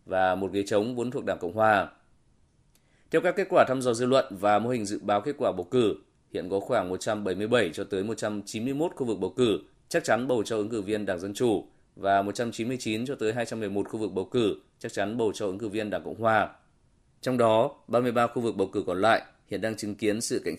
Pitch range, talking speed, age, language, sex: 105-125 Hz, 235 wpm, 20-39, Vietnamese, male